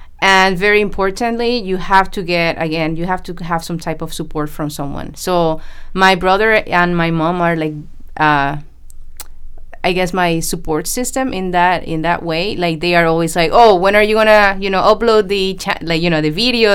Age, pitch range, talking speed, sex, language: 20-39, 150-200 Hz, 205 wpm, female, English